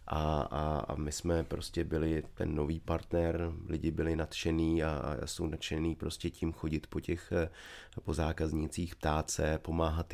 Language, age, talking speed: English, 30-49, 160 wpm